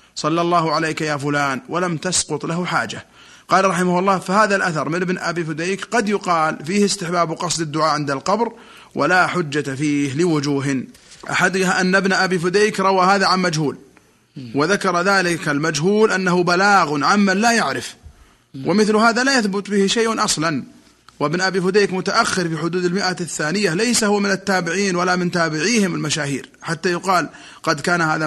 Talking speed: 160 wpm